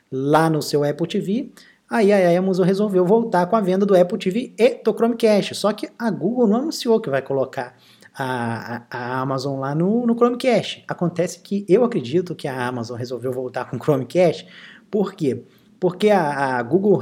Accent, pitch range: Brazilian, 155-220 Hz